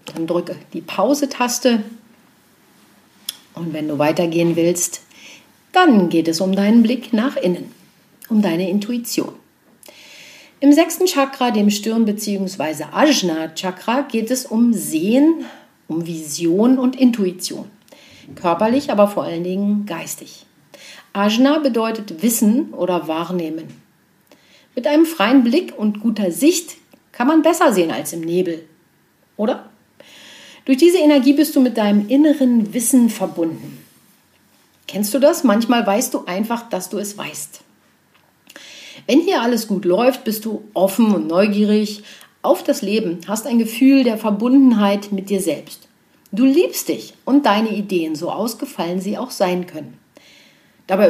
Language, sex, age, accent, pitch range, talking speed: German, female, 50-69, German, 190-270 Hz, 135 wpm